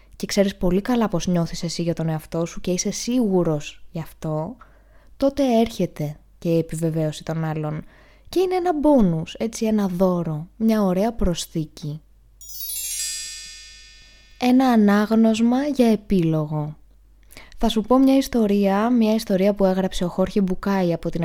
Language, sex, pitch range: Greek, female, 170-235 Hz